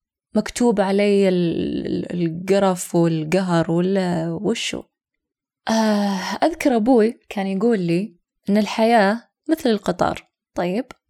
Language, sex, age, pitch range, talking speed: Arabic, female, 20-39, 180-225 Hz, 80 wpm